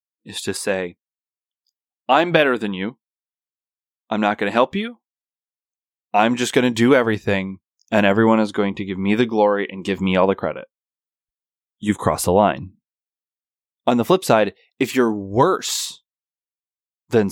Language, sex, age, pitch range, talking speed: English, male, 20-39, 105-155 Hz, 160 wpm